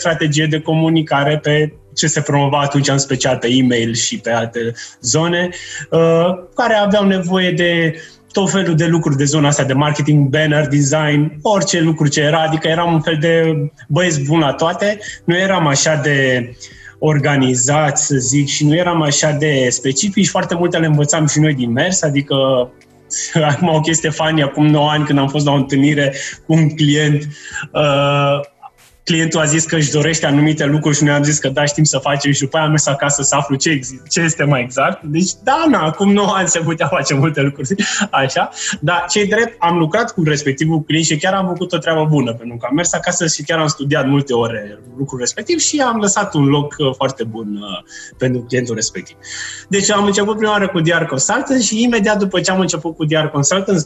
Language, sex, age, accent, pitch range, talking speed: Romanian, male, 20-39, native, 140-170 Hz, 200 wpm